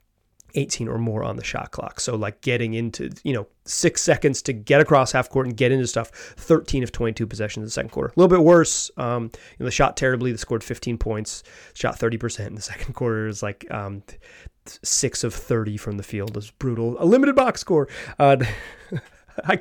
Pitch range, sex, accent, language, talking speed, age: 115-155 Hz, male, American, English, 210 wpm, 30-49